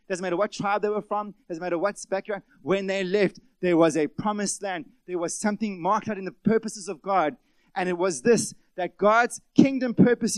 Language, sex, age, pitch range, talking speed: English, male, 30-49, 185-225 Hz, 215 wpm